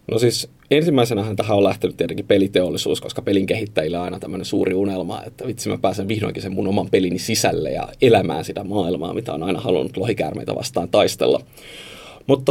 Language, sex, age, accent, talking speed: Finnish, male, 30-49, native, 180 wpm